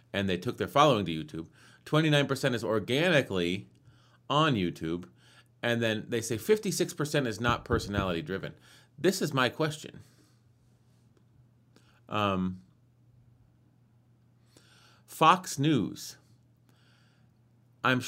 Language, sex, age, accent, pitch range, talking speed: English, male, 30-49, American, 110-130 Hz, 95 wpm